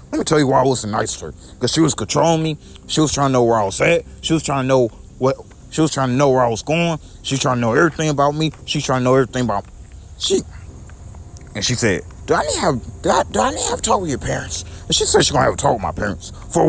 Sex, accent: male, American